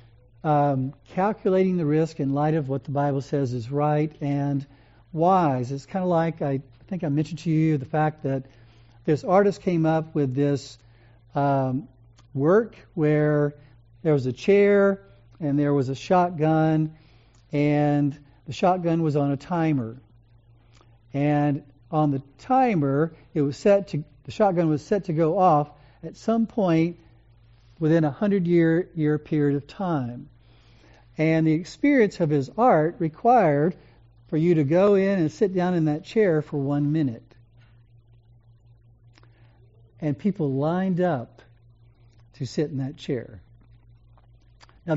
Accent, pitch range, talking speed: American, 125-170 Hz, 145 wpm